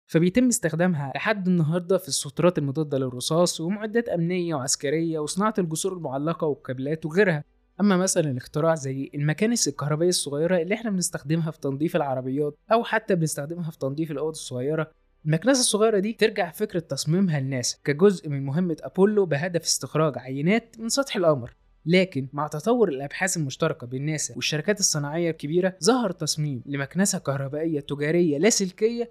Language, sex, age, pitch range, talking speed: Arabic, male, 20-39, 145-190 Hz, 140 wpm